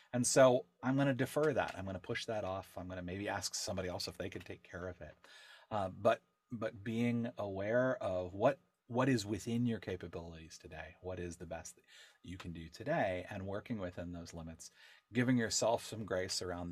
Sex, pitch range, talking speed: male, 90-120 Hz, 210 wpm